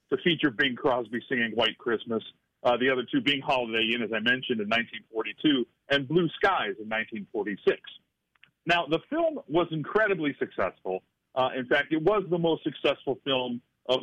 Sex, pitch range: male, 125-185 Hz